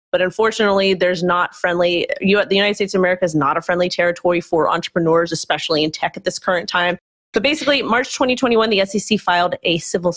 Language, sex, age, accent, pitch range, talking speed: English, female, 30-49, American, 175-215 Hz, 195 wpm